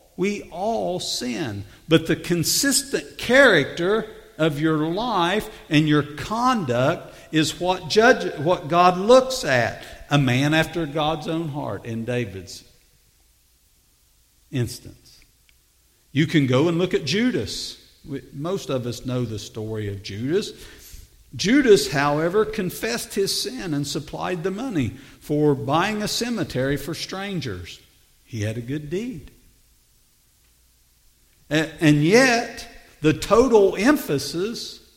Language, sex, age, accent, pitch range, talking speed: English, male, 50-69, American, 135-200 Hz, 115 wpm